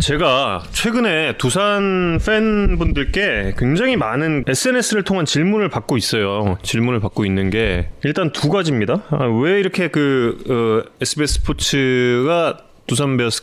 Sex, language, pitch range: male, Korean, 110-175 Hz